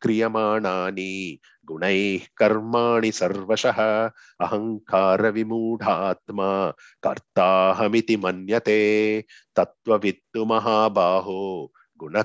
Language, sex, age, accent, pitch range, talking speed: English, male, 30-49, Indian, 95-110 Hz, 55 wpm